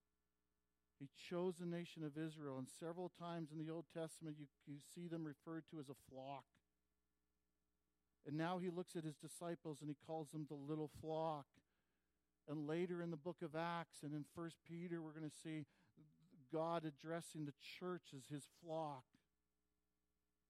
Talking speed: 170 wpm